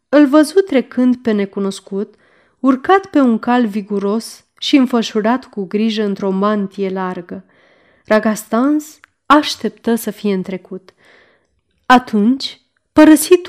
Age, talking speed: 20-39, 110 wpm